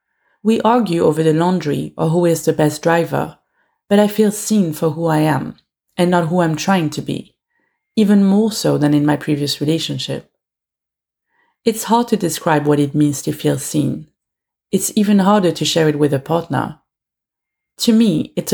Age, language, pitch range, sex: 30-49, English, 150-195 Hz, female